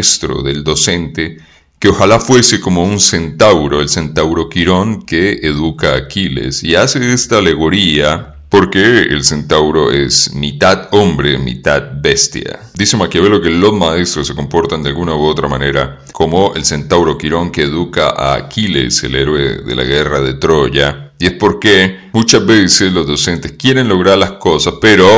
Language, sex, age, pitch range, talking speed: English, male, 40-59, 75-100 Hz, 155 wpm